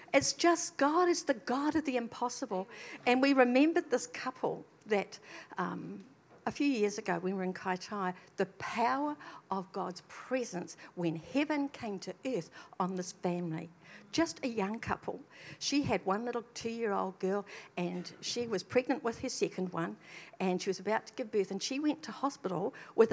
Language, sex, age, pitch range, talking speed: English, female, 60-79, 185-270 Hz, 175 wpm